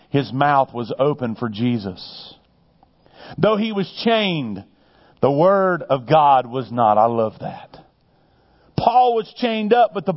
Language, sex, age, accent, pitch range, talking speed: English, male, 40-59, American, 140-220 Hz, 150 wpm